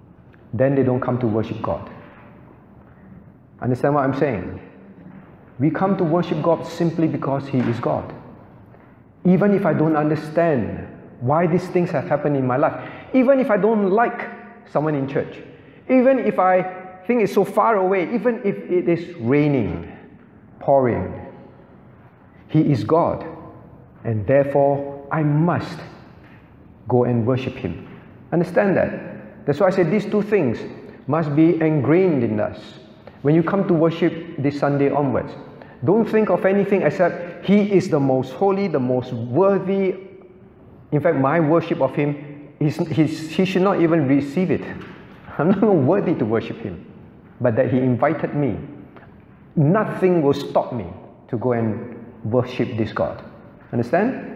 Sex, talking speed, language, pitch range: male, 150 wpm, English, 130-185 Hz